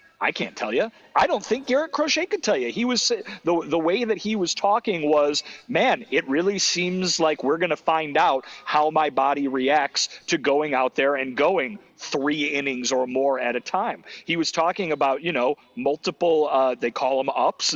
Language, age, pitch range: English, 40-59, 135-185 Hz